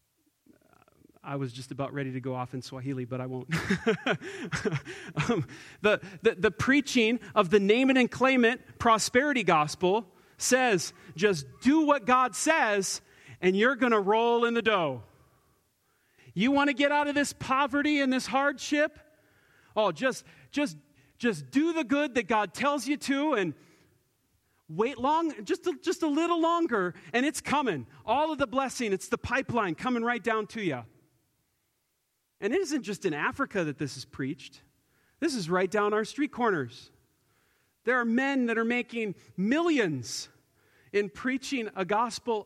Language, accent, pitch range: English, American, 180-255 Hz